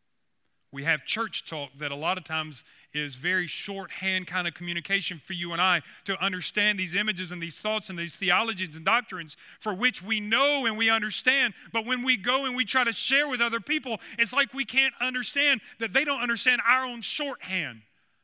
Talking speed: 205 wpm